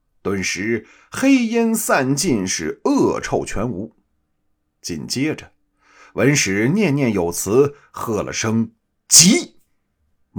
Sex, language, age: male, Chinese, 50-69